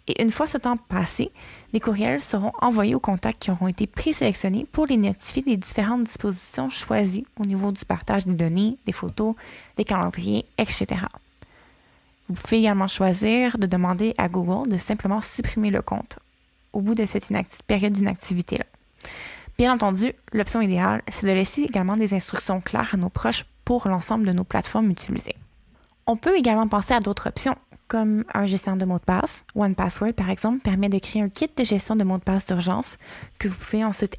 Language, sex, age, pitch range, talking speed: French, female, 20-39, 195-230 Hz, 190 wpm